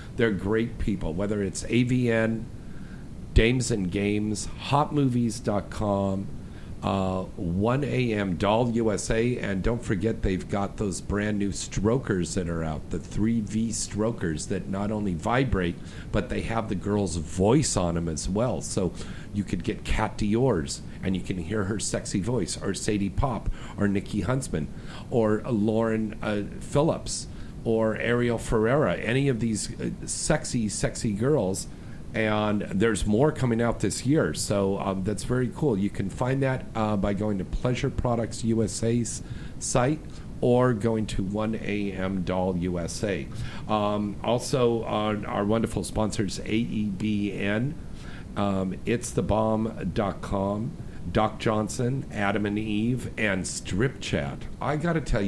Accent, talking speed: American, 140 wpm